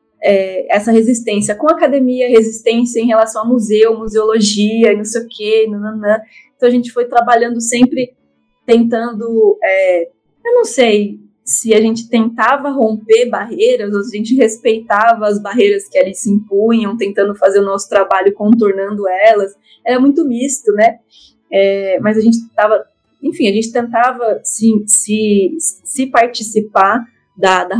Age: 20-39